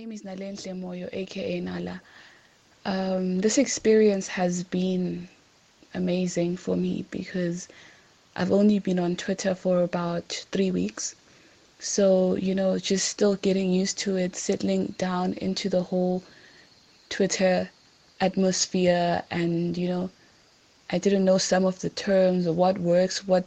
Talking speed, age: 125 wpm, 20-39